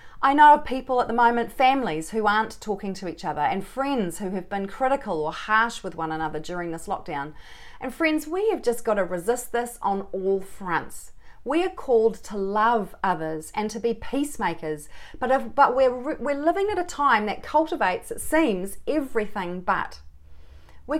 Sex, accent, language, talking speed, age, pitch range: female, Australian, English, 190 wpm, 40-59, 195-275 Hz